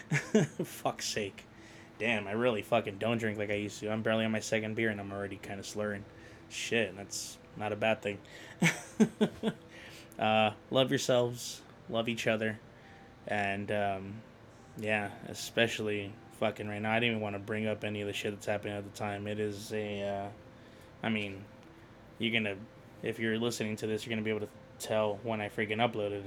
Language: English